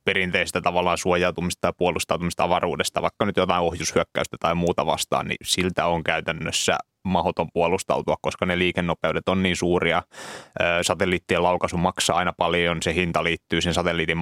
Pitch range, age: 85-90 Hz, 20-39